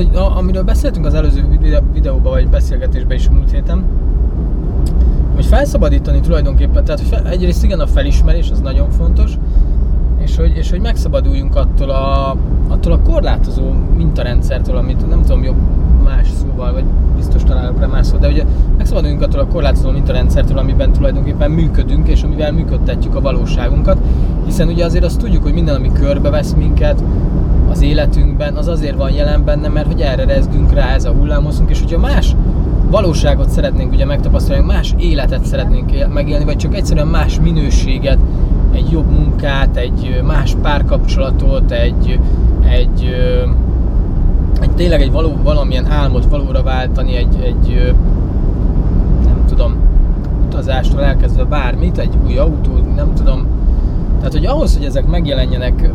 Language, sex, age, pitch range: Hungarian, male, 20-39, 65-80 Hz